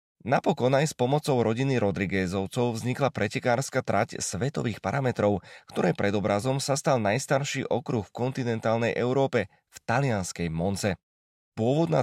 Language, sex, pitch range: Slovak, male, 105-130 Hz